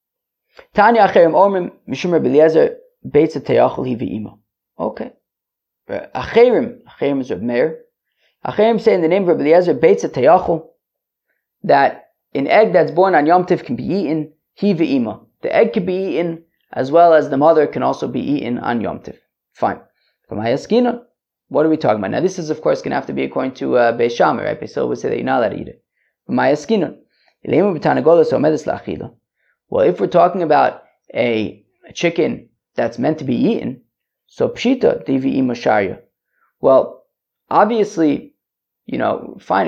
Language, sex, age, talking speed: English, male, 30-49, 175 wpm